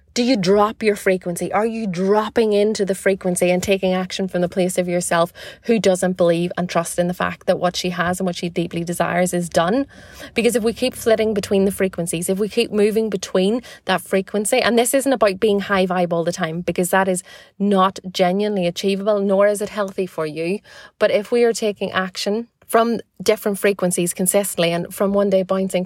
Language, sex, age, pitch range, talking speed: English, female, 30-49, 180-215 Hz, 210 wpm